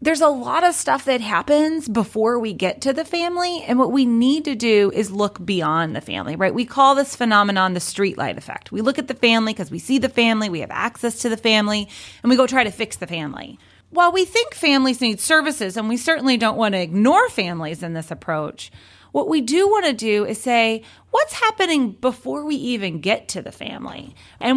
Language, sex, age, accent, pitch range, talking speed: English, female, 30-49, American, 200-270 Hz, 220 wpm